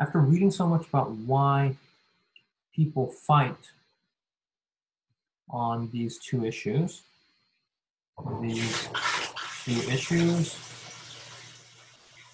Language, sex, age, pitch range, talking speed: English, male, 20-39, 120-145 Hz, 75 wpm